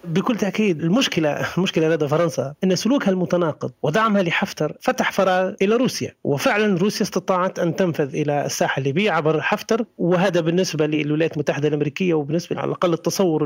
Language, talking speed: Arabic, 150 wpm